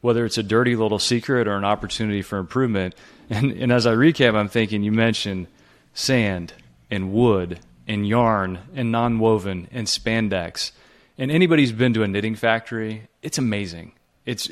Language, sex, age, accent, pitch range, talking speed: English, male, 30-49, American, 100-125 Hz, 160 wpm